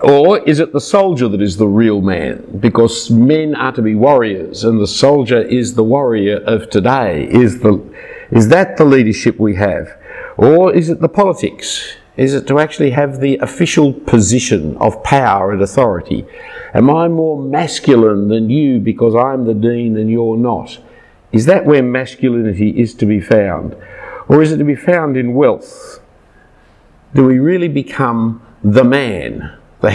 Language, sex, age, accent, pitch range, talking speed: English, male, 50-69, Australian, 110-150 Hz, 170 wpm